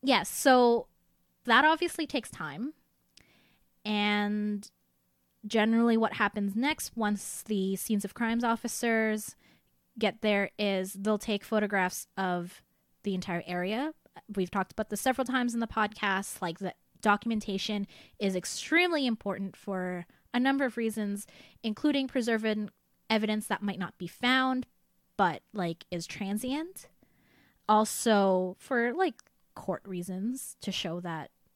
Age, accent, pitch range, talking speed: 20-39, American, 190-235 Hz, 125 wpm